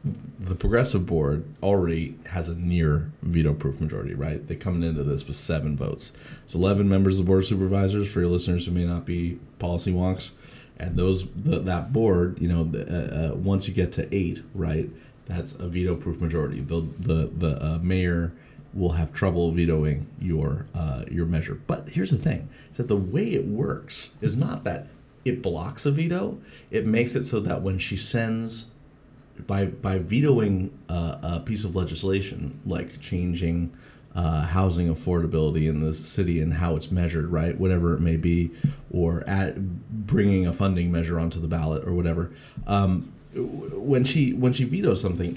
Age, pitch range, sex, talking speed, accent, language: 30-49, 85-100 Hz, male, 180 wpm, American, English